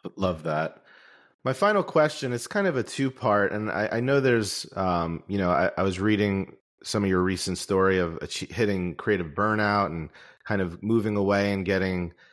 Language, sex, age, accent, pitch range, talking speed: English, male, 30-49, American, 90-105 Hz, 190 wpm